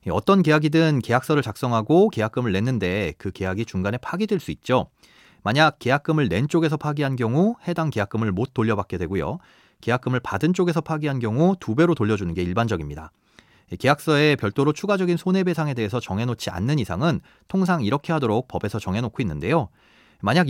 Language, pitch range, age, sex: Korean, 110-160 Hz, 30-49, male